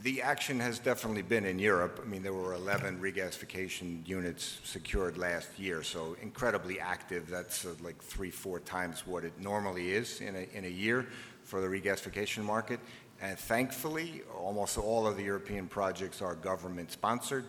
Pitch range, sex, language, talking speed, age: 95-120 Hz, male, English, 170 wpm, 50-69